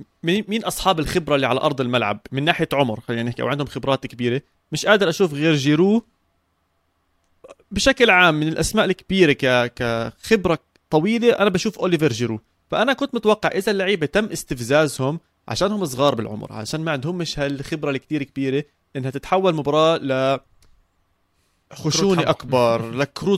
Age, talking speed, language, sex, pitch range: 30-49, 145 wpm, Arabic, male, 130-185 Hz